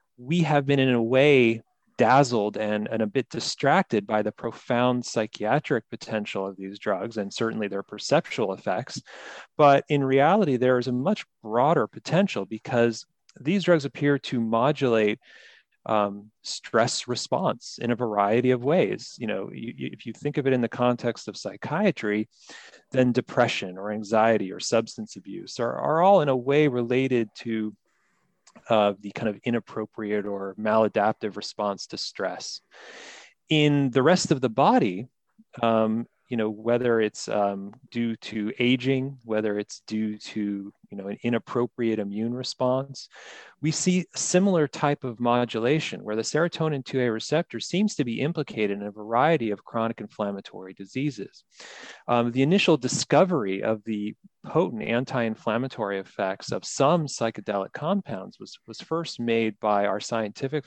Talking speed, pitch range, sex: 150 wpm, 105-140 Hz, male